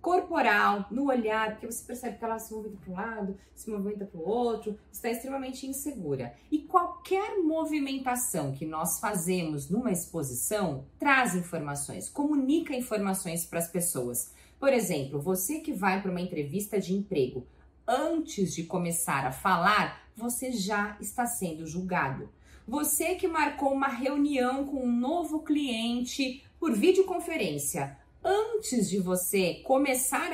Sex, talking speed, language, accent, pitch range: female, 140 wpm, Portuguese, Brazilian, 180-275 Hz